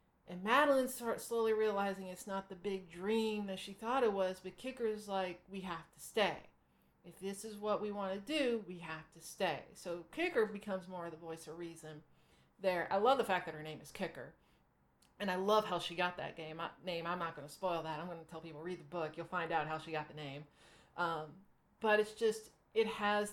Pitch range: 180-220 Hz